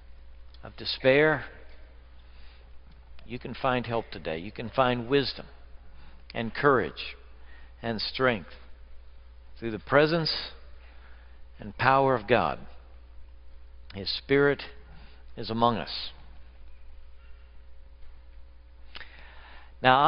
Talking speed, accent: 85 wpm, American